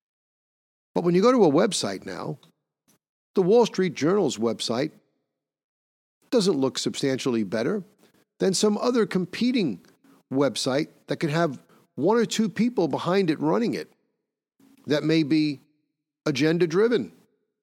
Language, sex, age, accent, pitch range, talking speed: English, male, 50-69, American, 120-185 Hz, 125 wpm